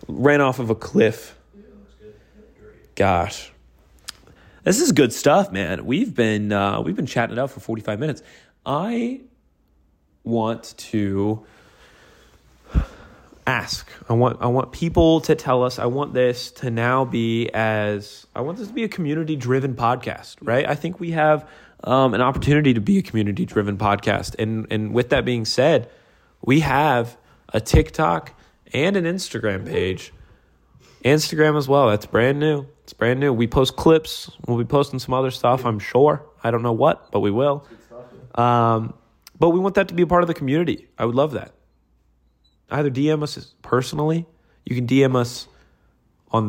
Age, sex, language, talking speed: 20-39, male, English, 165 wpm